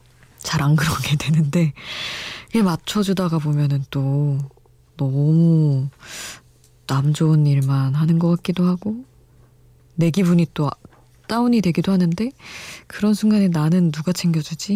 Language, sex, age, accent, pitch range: Korean, female, 20-39, native, 140-180 Hz